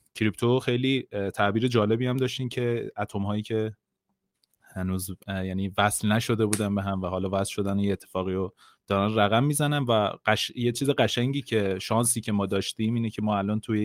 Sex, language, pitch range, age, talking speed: male, Persian, 95-120 Hz, 30-49, 180 wpm